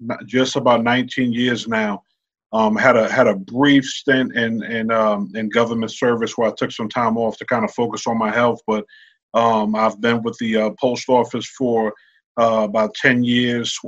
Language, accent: English, American